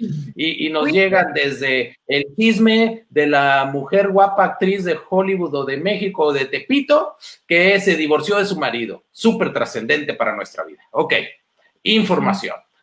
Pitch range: 160-240 Hz